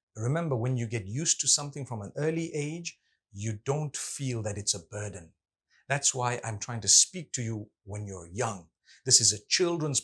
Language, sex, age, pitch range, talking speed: English, male, 50-69, 110-160 Hz, 195 wpm